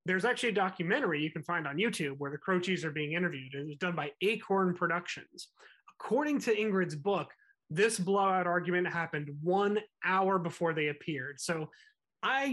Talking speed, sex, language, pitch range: 175 wpm, male, English, 155-200 Hz